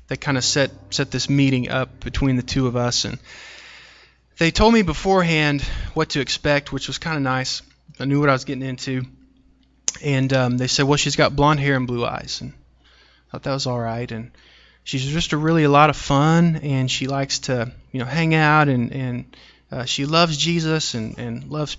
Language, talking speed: English, 215 wpm